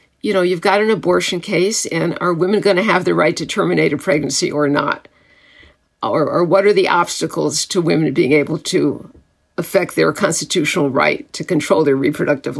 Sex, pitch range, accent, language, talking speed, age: female, 180-240 Hz, American, English, 185 wpm, 50-69